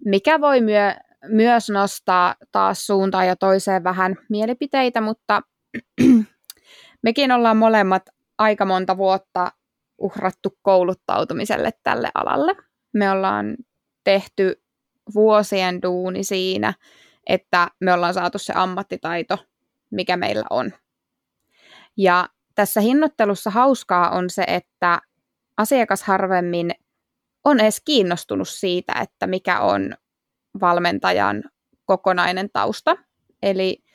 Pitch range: 185-220 Hz